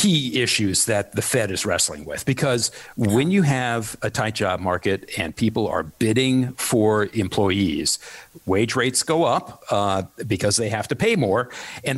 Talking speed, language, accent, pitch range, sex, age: 170 wpm, English, American, 105-140 Hz, male, 50-69